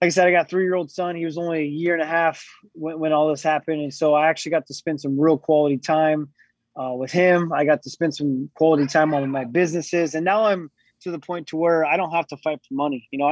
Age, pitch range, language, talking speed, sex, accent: 20-39, 145-175 Hz, English, 280 wpm, male, American